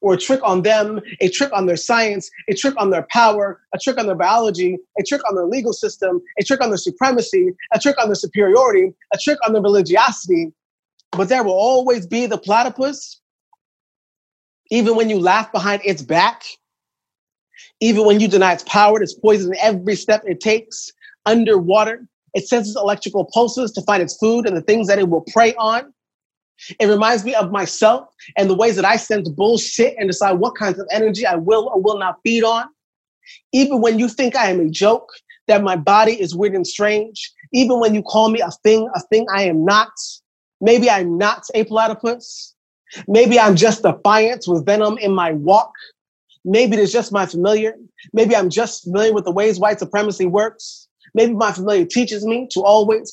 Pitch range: 195-230 Hz